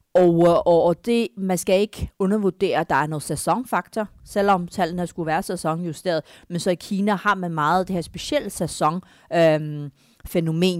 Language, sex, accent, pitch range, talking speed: Danish, female, native, 150-185 Hz, 160 wpm